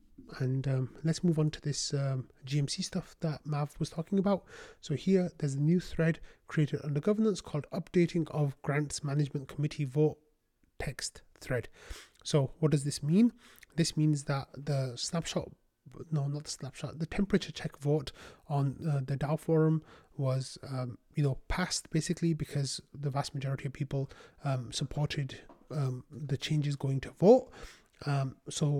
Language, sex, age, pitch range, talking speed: English, male, 30-49, 140-160 Hz, 165 wpm